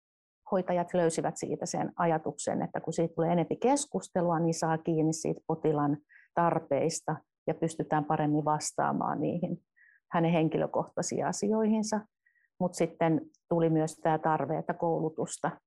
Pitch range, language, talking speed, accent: 160-180 Hz, Finnish, 125 wpm, native